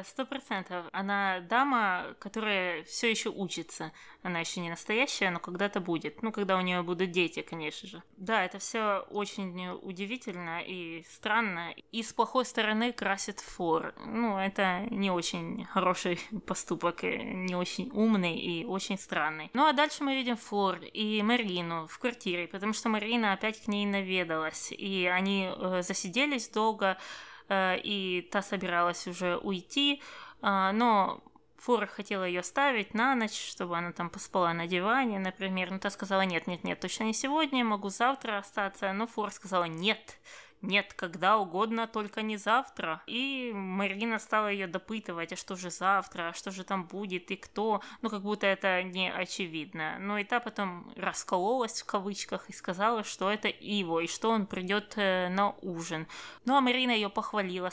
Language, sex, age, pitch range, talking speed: Russian, female, 20-39, 180-220 Hz, 160 wpm